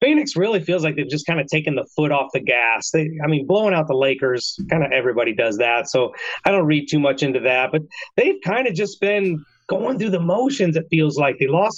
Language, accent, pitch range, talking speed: English, American, 145-185 Hz, 245 wpm